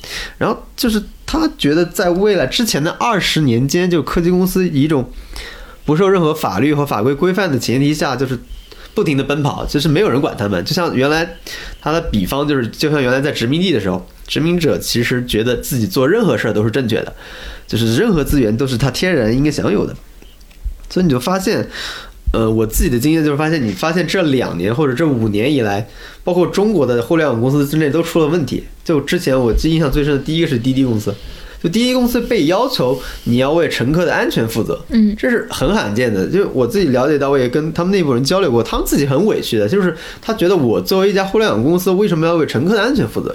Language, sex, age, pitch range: Chinese, male, 20-39, 115-175 Hz